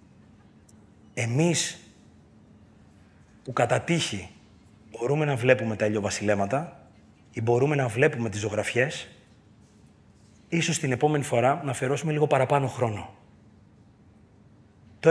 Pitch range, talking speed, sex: 110-165 Hz, 155 wpm, male